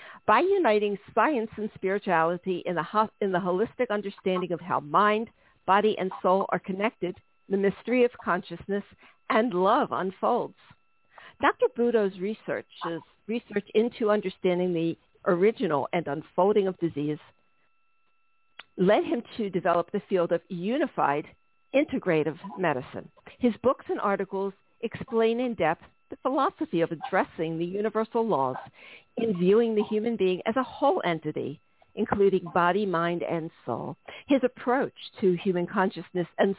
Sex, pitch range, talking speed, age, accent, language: female, 175-220 Hz, 130 wpm, 50-69, American, English